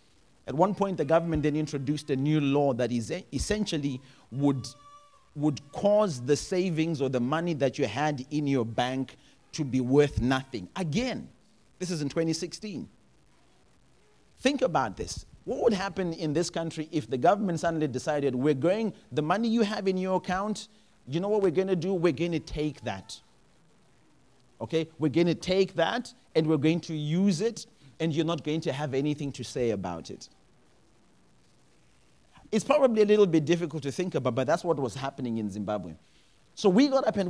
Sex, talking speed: male, 185 wpm